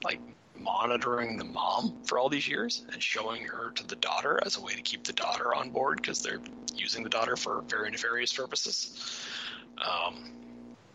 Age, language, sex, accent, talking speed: 30-49, English, male, American, 180 wpm